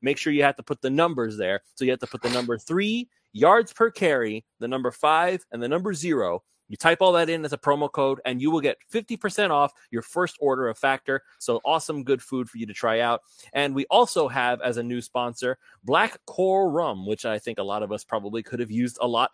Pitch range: 120-170 Hz